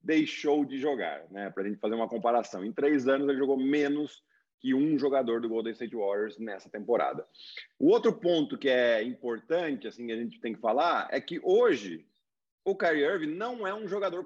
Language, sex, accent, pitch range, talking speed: Portuguese, male, Brazilian, 135-215 Hz, 200 wpm